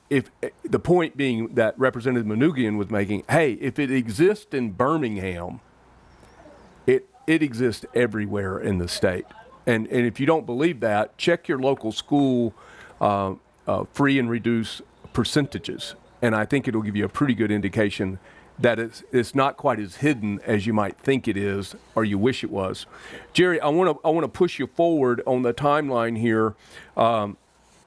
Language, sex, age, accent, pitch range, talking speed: English, male, 40-59, American, 110-135 Hz, 175 wpm